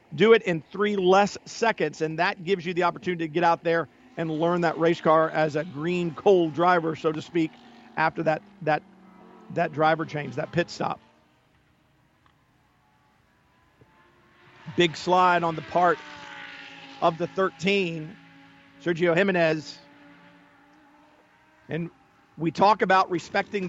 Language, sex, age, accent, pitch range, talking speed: English, male, 50-69, American, 160-190 Hz, 135 wpm